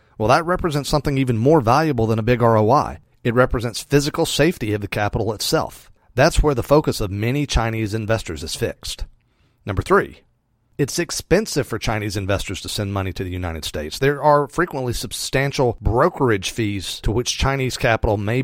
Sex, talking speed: male, 175 wpm